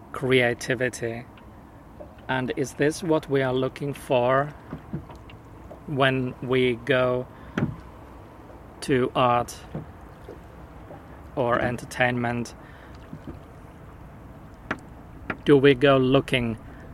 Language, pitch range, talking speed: English, 120-135 Hz, 70 wpm